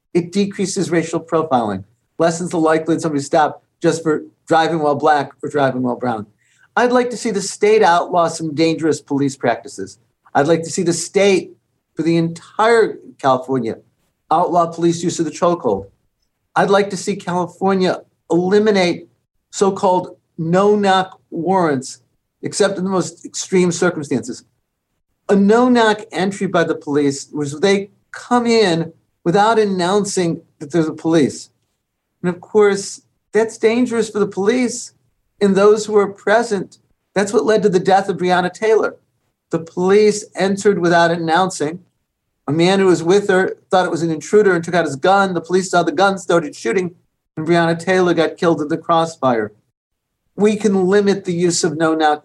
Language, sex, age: English, male, 50-69